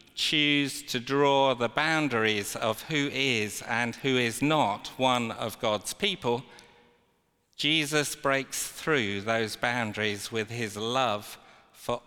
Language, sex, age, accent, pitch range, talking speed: English, male, 50-69, British, 115-145 Hz, 125 wpm